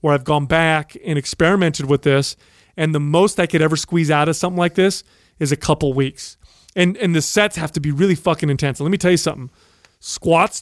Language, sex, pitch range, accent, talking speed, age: English, male, 145-185 Hz, American, 230 wpm, 30-49